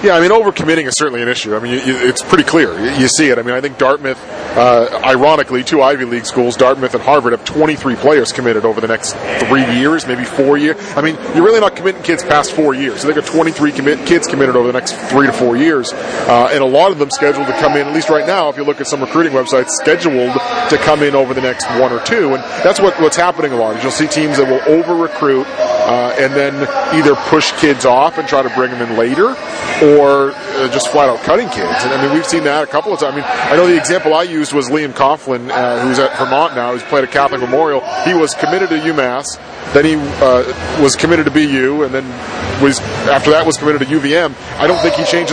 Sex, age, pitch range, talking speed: male, 30-49, 130-155 Hz, 255 wpm